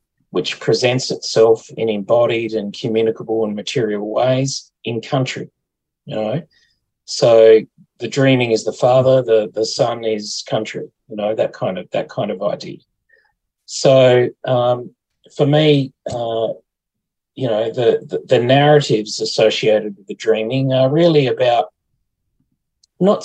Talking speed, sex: 135 wpm, male